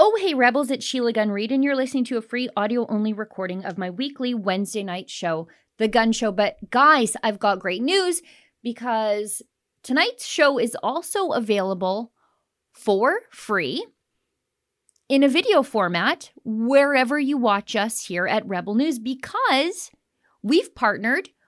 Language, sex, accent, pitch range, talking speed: English, female, American, 195-270 Hz, 150 wpm